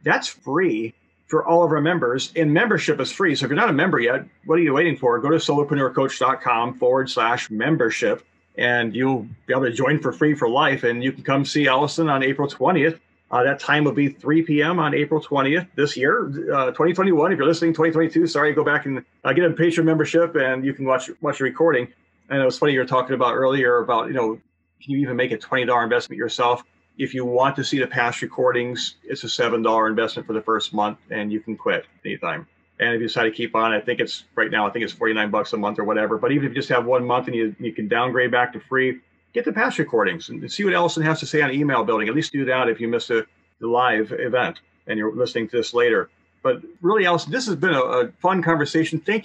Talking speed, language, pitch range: 250 wpm, English, 120-155 Hz